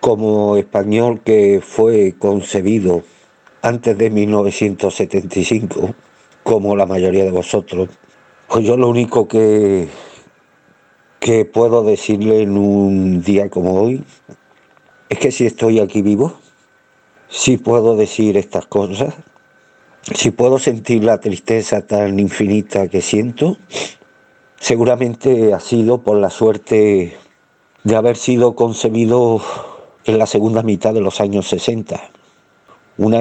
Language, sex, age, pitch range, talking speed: Spanish, male, 50-69, 100-115 Hz, 115 wpm